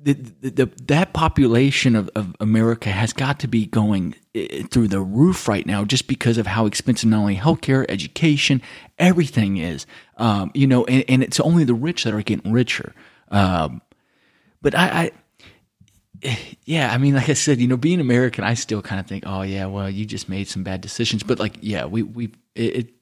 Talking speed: 200 wpm